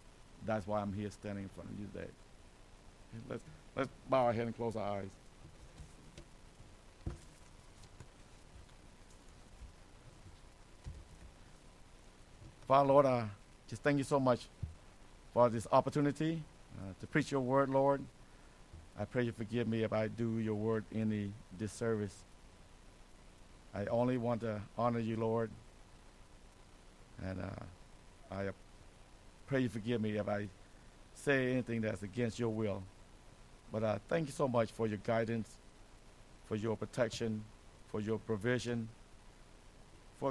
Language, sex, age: English, male, 60-79